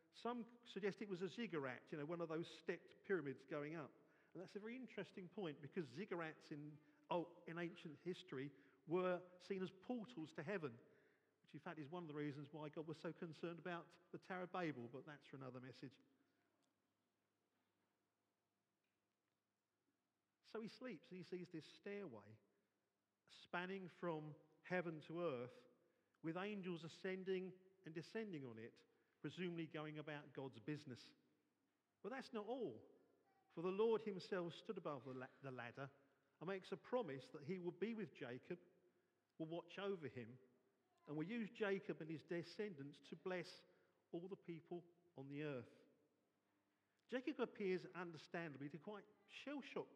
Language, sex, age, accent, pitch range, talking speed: English, male, 50-69, British, 145-195 Hz, 155 wpm